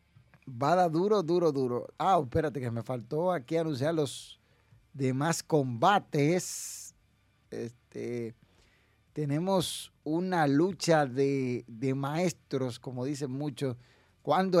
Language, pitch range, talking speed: Spanish, 125-165 Hz, 105 wpm